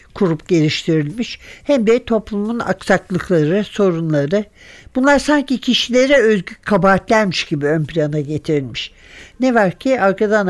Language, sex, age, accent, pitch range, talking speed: Turkish, male, 60-79, native, 180-220 Hz, 115 wpm